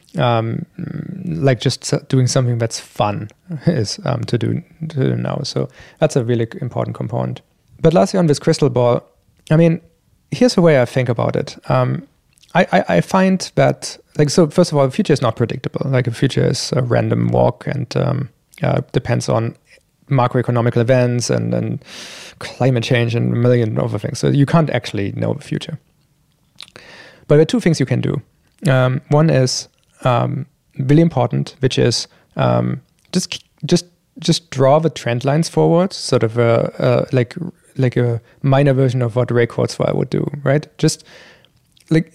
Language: English